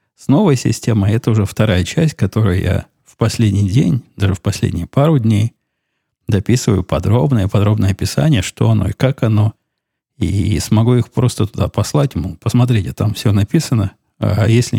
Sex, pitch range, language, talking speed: male, 100-125 Hz, Russian, 150 wpm